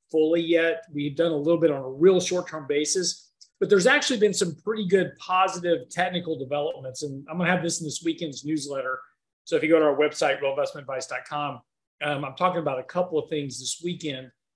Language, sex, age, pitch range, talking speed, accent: English, male, 40-59, 150-185 Hz, 205 wpm, American